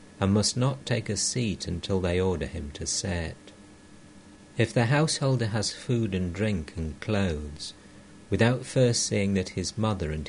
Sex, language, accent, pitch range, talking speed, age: male, English, British, 90-110 Hz, 165 wpm, 60-79